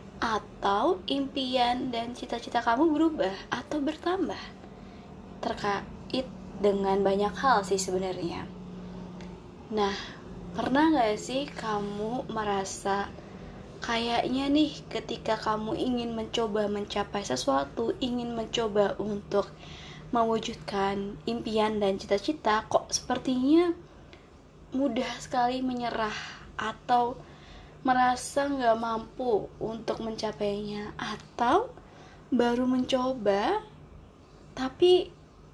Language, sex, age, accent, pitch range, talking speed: Indonesian, female, 20-39, native, 205-260 Hz, 85 wpm